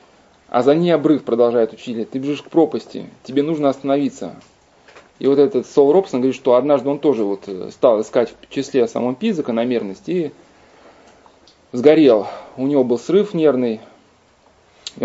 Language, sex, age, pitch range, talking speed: Russian, male, 20-39, 125-175 Hz, 150 wpm